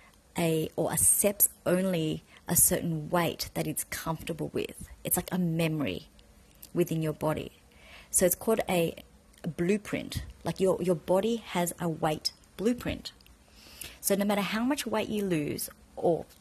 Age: 30-49